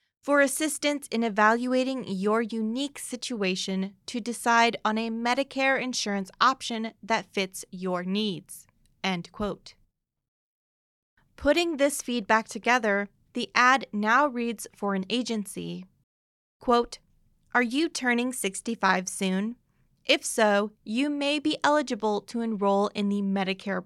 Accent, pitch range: American, 200-255 Hz